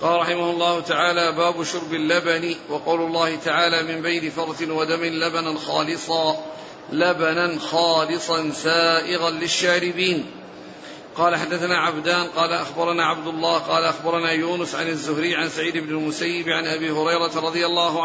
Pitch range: 165-175 Hz